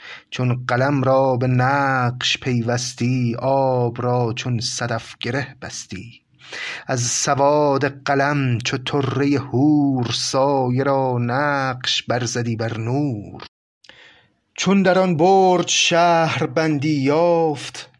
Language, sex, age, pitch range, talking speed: Persian, male, 30-49, 120-150 Hz, 105 wpm